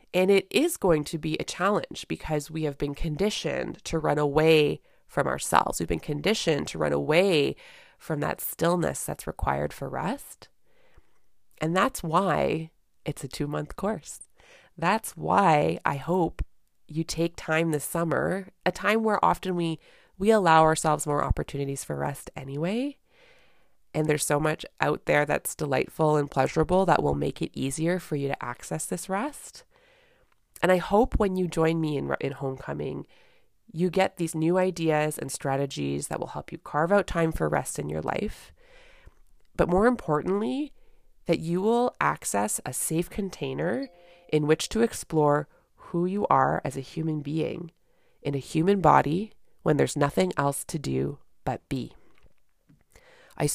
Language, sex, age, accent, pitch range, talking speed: English, female, 20-39, American, 145-185 Hz, 160 wpm